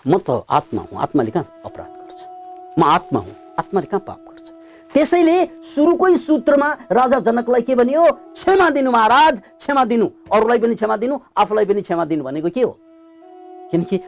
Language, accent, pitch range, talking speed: English, Indian, 200-330 Hz, 160 wpm